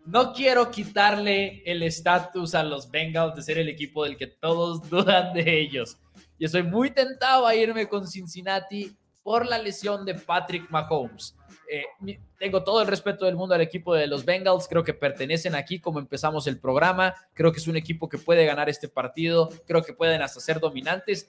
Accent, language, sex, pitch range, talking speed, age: Mexican, Spanish, male, 160-200 Hz, 190 wpm, 20-39